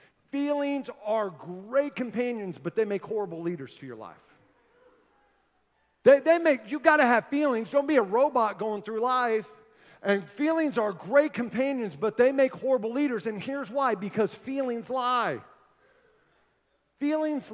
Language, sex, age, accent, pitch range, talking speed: English, male, 40-59, American, 200-265 Hz, 150 wpm